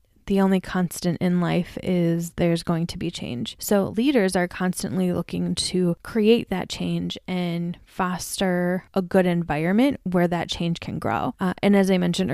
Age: 20-39